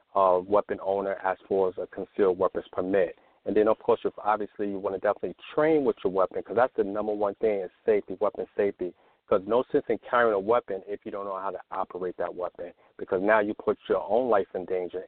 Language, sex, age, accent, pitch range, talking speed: English, male, 40-59, American, 100-155 Hz, 230 wpm